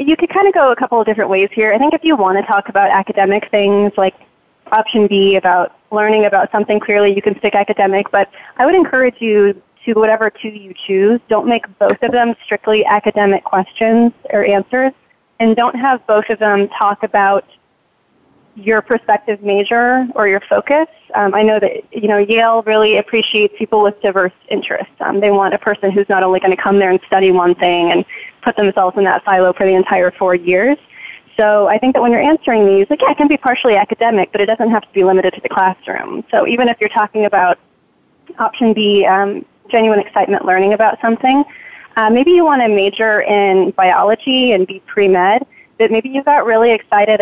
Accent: American